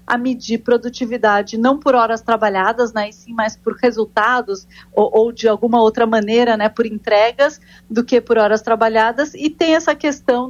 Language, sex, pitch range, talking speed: Portuguese, female, 225-260 Hz, 175 wpm